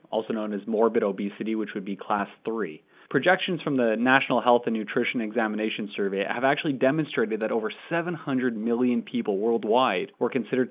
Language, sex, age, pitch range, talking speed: English, male, 30-49, 105-140 Hz, 170 wpm